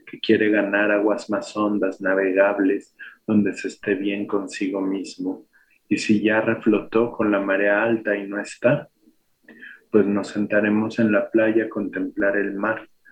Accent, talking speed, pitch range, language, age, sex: Mexican, 155 wpm, 100-110 Hz, Spanish, 40-59, male